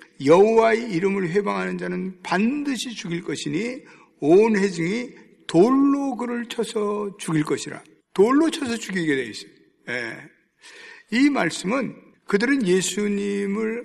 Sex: male